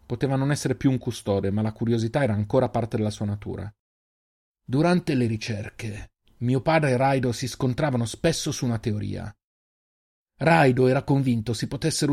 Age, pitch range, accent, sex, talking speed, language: 40-59, 105-135 Hz, native, male, 165 wpm, Italian